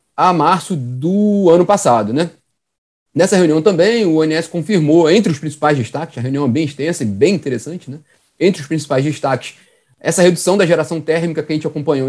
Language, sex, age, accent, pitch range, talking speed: Portuguese, male, 30-49, Brazilian, 135-165 Hz, 190 wpm